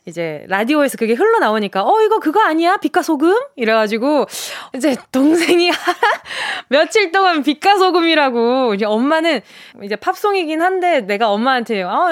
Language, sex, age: Korean, female, 20-39